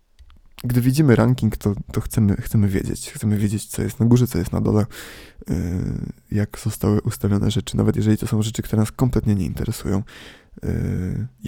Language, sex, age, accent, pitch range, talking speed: Polish, male, 20-39, native, 100-110 Hz, 180 wpm